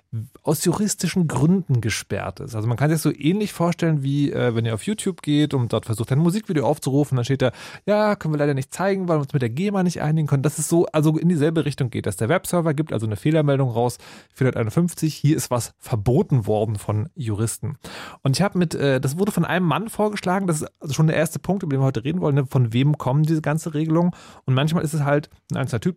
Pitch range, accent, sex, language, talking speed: 125-165 Hz, German, male, German, 245 wpm